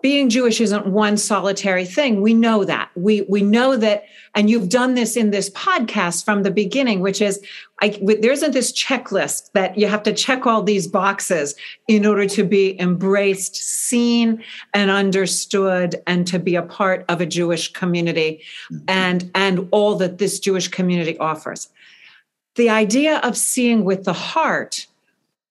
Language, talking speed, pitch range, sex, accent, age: English, 165 wpm, 190-240 Hz, female, American, 40-59